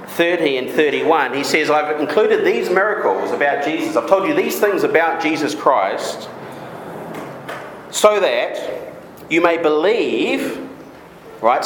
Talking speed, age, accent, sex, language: 130 wpm, 40-59, Australian, male, English